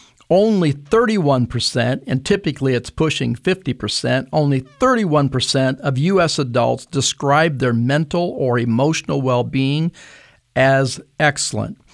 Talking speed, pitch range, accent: 100 wpm, 130-170 Hz, American